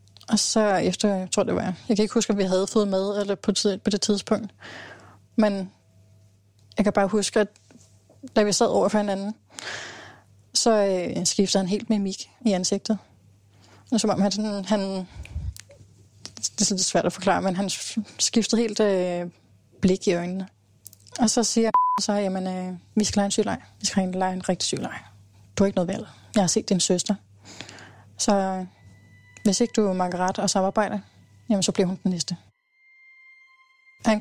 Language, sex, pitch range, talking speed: Danish, female, 175-215 Hz, 185 wpm